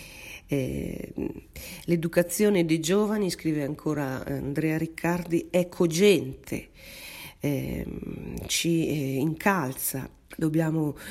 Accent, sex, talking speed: native, female, 70 wpm